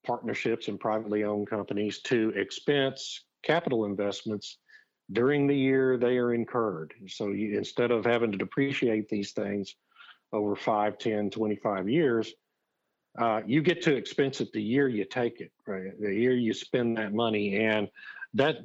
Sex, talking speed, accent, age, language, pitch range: male, 155 wpm, American, 50-69, English, 105-125 Hz